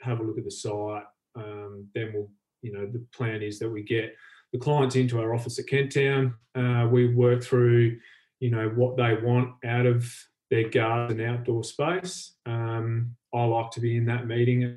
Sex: male